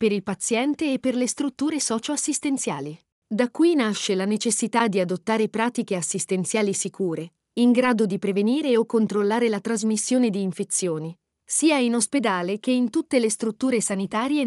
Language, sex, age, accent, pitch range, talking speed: Italian, female, 40-59, native, 200-265 Hz, 155 wpm